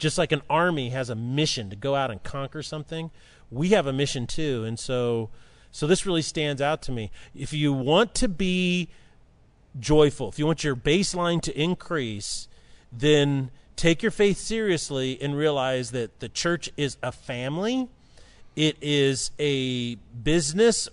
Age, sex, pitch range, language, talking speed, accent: 40-59, male, 125-165 Hz, English, 165 wpm, American